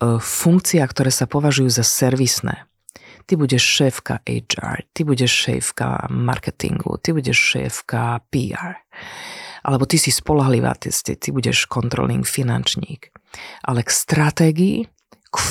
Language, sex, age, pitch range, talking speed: Slovak, female, 40-59, 120-150 Hz, 120 wpm